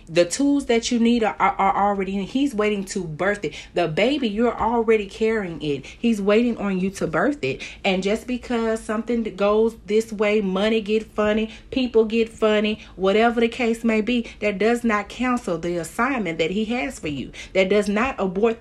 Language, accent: English, American